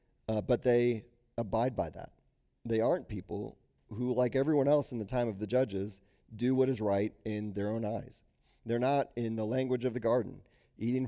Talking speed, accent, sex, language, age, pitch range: 195 wpm, American, male, English, 40-59, 100-125 Hz